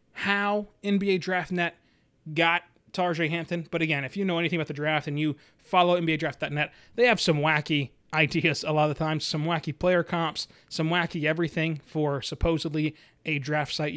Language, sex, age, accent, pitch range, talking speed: English, male, 30-49, American, 155-190 Hz, 180 wpm